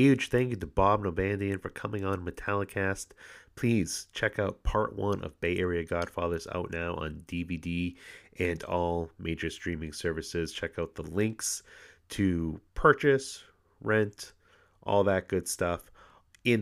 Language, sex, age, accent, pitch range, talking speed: English, male, 30-49, American, 85-105 Hz, 145 wpm